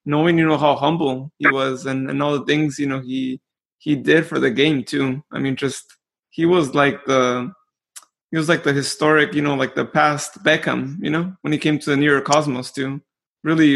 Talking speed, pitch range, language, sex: 225 wpm, 140-160 Hz, English, male